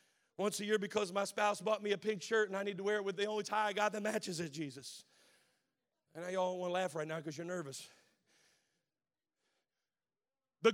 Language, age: English, 40-59